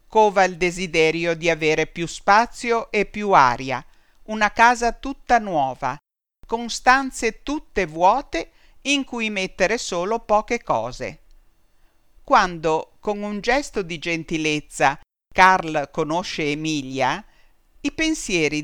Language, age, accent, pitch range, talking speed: Italian, 50-69, native, 165-235 Hz, 115 wpm